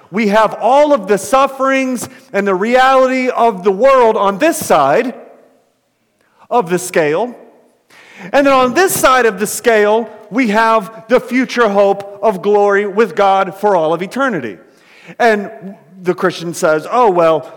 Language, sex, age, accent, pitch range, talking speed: English, male, 40-59, American, 175-250 Hz, 155 wpm